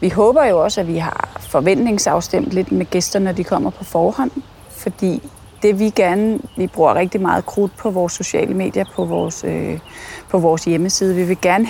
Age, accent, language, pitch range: 30-49, native, Danish, 175-220 Hz